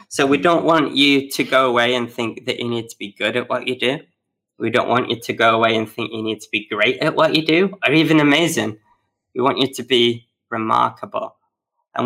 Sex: male